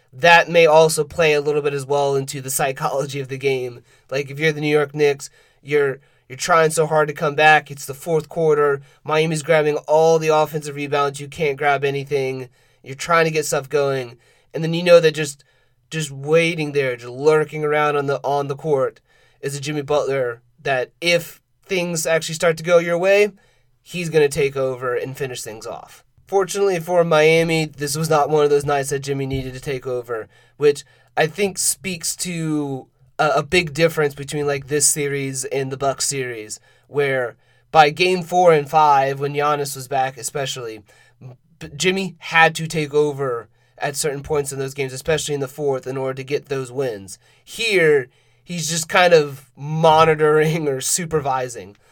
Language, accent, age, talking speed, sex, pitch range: English, American, 30-49, 185 wpm, male, 135-160 Hz